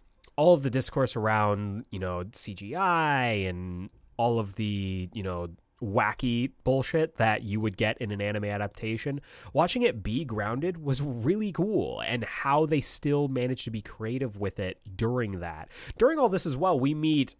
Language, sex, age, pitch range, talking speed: English, male, 20-39, 100-140 Hz, 170 wpm